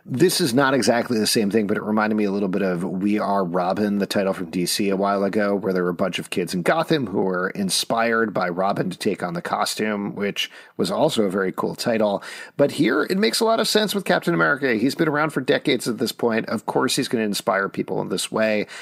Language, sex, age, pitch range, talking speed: English, male, 40-59, 105-155 Hz, 255 wpm